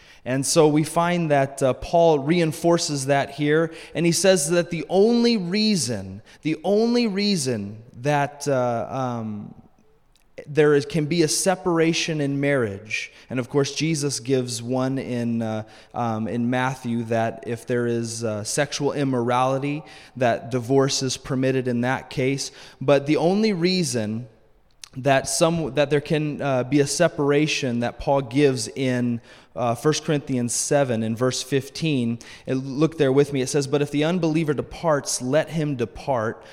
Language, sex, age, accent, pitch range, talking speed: English, male, 20-39, American, 125-160 Hz, 150 wpm